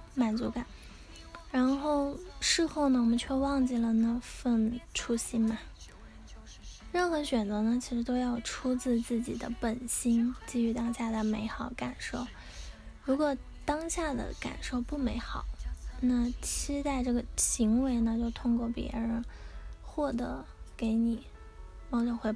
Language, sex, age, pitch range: Chinese, female, 10-29, 225-260 Hz